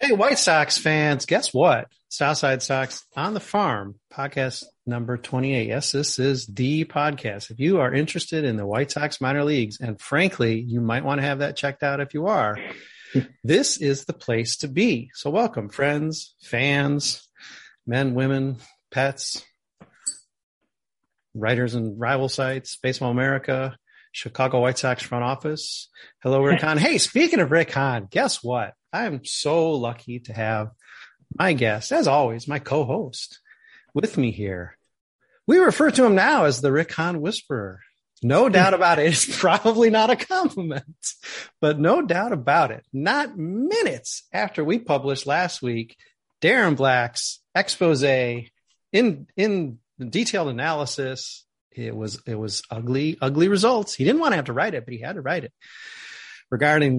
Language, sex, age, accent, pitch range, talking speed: English, male, 40-59, American, 125-165 Hz, 160 wpm